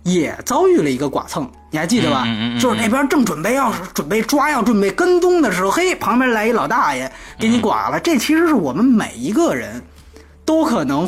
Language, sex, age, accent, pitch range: Chinese, male, 20-39, native, 210-300 Hz